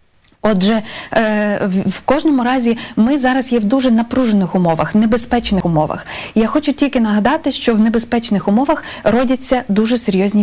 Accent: native